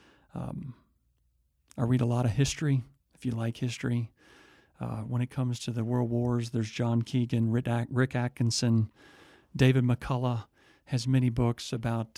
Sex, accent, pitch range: male, American, 110-125 Hz